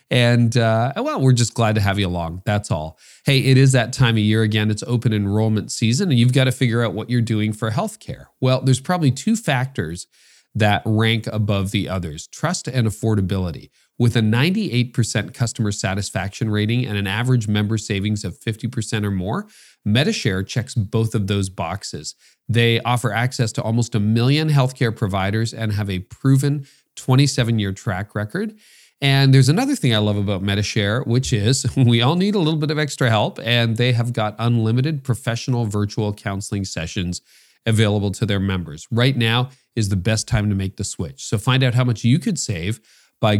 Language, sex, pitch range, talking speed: English, male, 105-130 Hz, 190 wpm